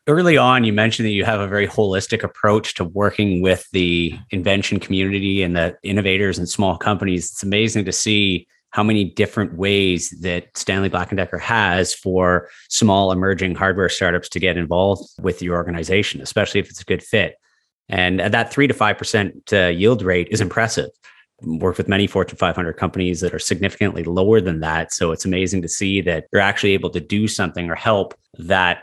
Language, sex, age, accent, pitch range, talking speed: English, male, 30-49, American, 90-105 Hz, 190 wpm